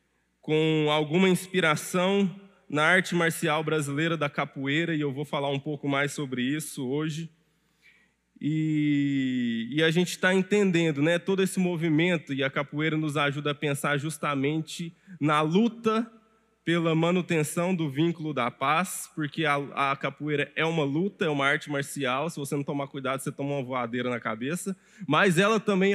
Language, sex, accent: Portuguese, male, Brazilian